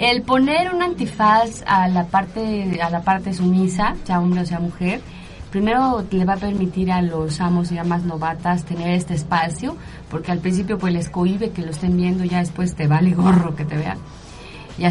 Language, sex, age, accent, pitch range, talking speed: Spanish, female, 30-49, Mexican, 175-210 Hz, 195 wpm